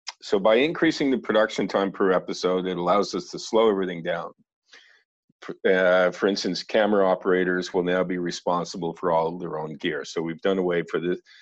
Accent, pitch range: American, 85-100 Hz